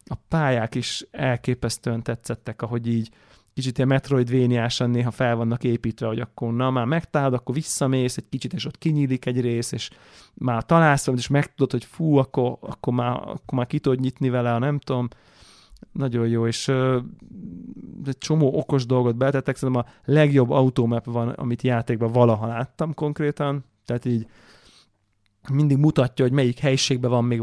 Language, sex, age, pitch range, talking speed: Hungarian, male, 30-49, 120-135 Hz, 160 wpm